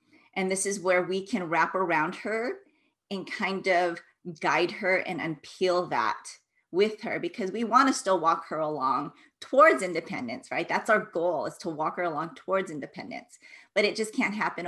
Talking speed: 180 wpm